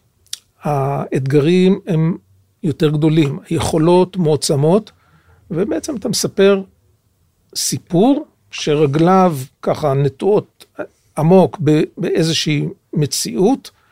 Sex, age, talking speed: male, 50-69, 70 wpm